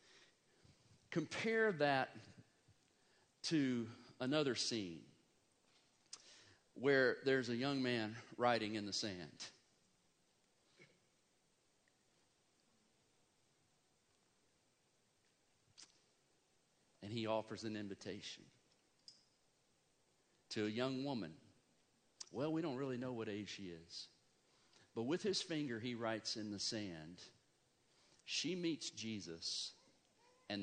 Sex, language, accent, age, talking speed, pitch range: male, English, American, 50-69, 90 wpm, 110-165 Hz